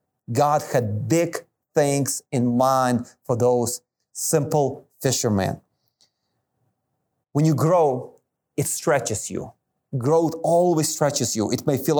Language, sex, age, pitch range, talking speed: English, male, 30-49, 130-165 Hz, 115 wpm